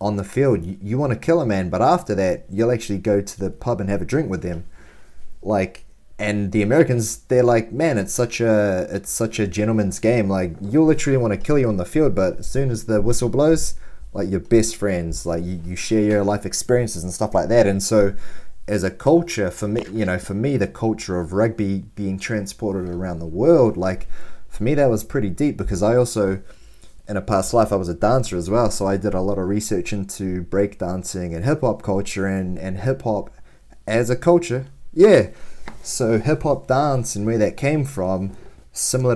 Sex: male